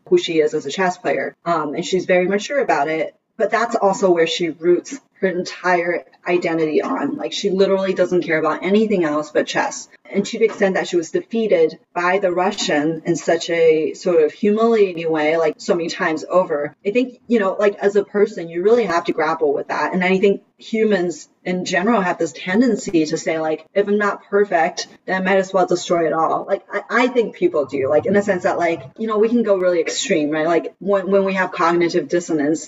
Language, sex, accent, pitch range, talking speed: English, female, American, 165-205 Hz, 230 wpm